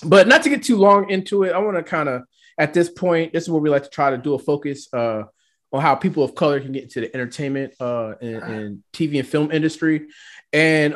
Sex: male